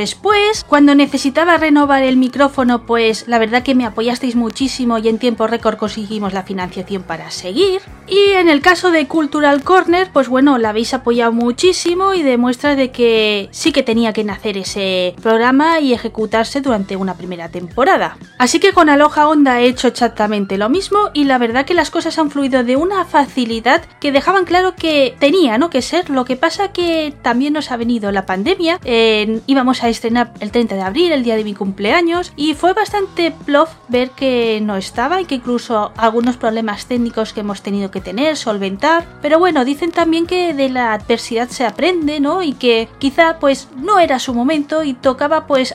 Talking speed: 190 wpm